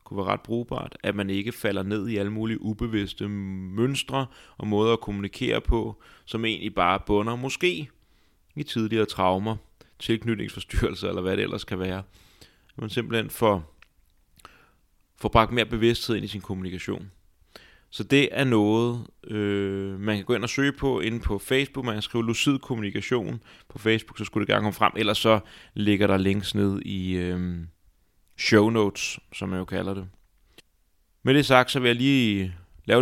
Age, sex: 30-49, male